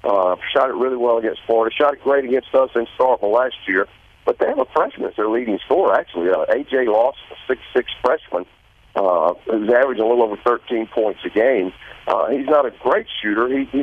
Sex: male